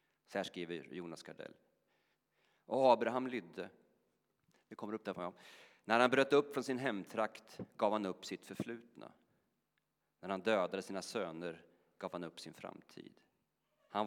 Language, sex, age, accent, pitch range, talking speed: Swedish, male, 40-59, native, 95-115 Hz, 150 wpm